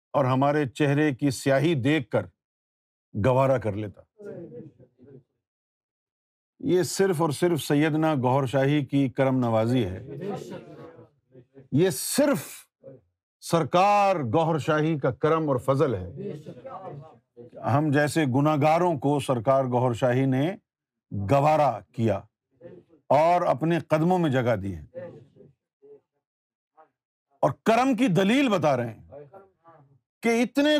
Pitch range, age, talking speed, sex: 135-210 Hz, 50-69, 110 wpm, male